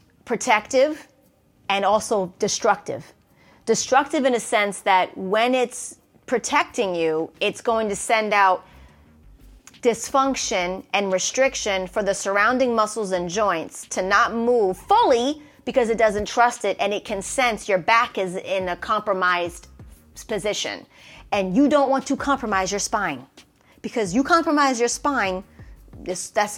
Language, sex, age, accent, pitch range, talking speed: English, female, 30-49, American, 180-245 Hz, 140 wpm